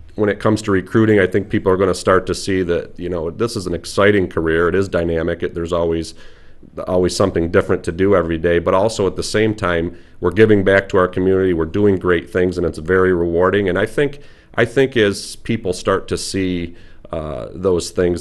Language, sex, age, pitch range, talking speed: English, male, 40-59, 85-105 Hz, 225 wpm